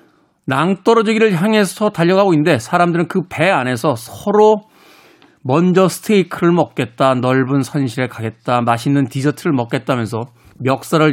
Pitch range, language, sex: 125-190 Hz, Korean, male